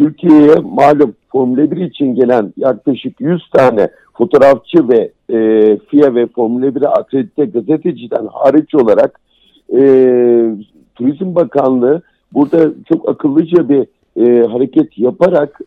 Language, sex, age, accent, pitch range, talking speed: Turkish, male, 60-79, native, 120-160 Hz, 115 wpm